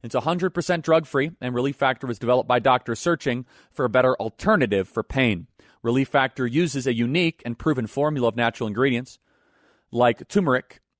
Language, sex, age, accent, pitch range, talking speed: English, male, 30-49, American, 115-150 Hz, 165 wpm